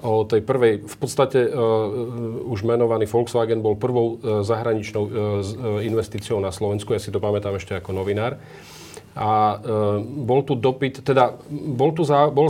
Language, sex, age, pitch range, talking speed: Slovak, male, 40-59, 100-115 Hz, 165 wpm